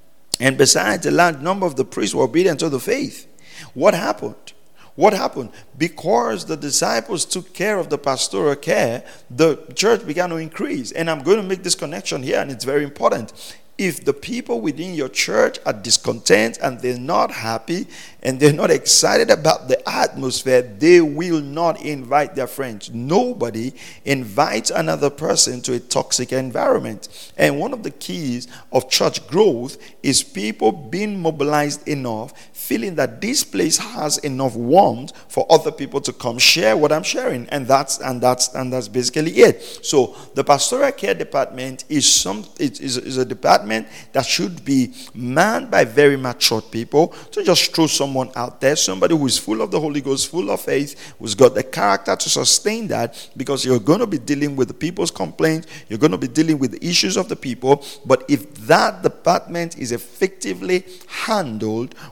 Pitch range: 125-165 Hz